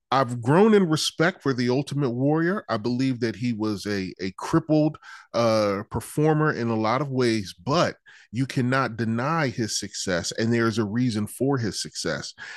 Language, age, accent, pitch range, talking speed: English, 30-49, American, 115-155 Hz, 175 wpm